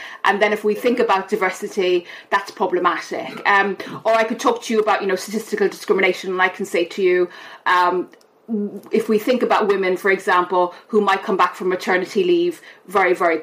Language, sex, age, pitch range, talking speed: English, female, 30-49, 185-230 Hz, 195 wpm